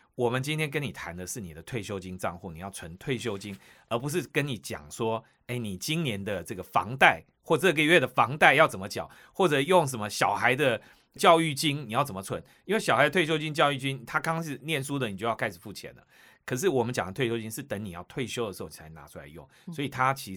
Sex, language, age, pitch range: male, Chinese, 30-49, 105-150 Hz